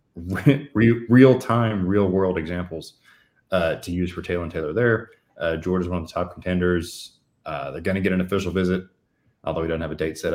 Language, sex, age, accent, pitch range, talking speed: English, male, 20-39, American, 90-105 Hz, 210 wpm